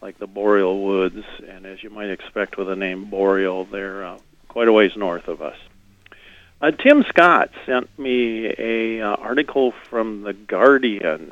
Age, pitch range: 50-69, 105-130 Hz